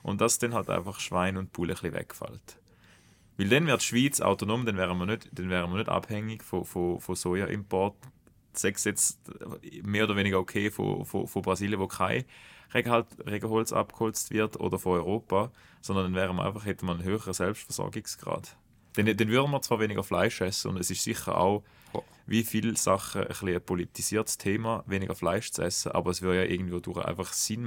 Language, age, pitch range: German, 20-39, 95-115 Hz